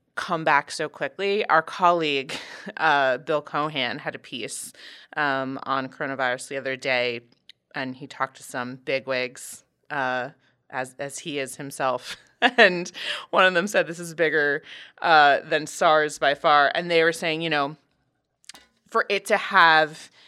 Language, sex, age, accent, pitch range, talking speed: English, female, 20-39, American, 135-175 Hz, 155 wpm